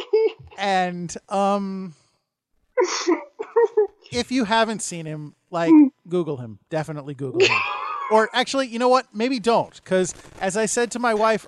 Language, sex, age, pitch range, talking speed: English, male, 40-59, 170-240 Hz, 140 wpm